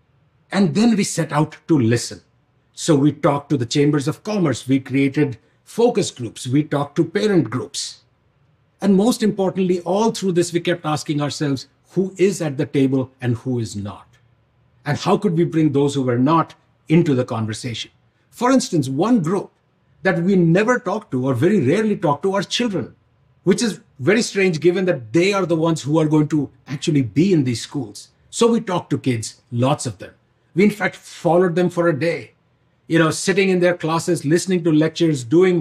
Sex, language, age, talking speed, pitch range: male, Arabic, 60-79, 195 wpm, 135-180 Hz